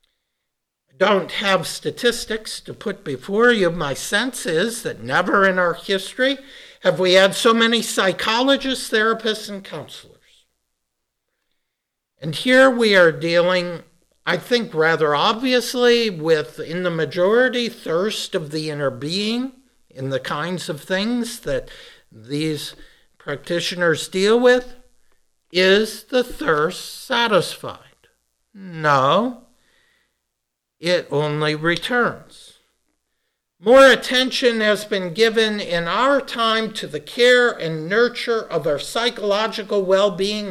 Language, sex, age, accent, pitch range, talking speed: English, male, 60-79, American, 160-235 Hz, 115 wpm